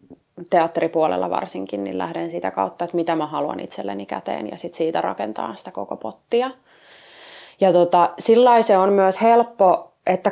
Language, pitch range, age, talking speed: Finnish, 165-210 Hz, 20-39, 155 wpm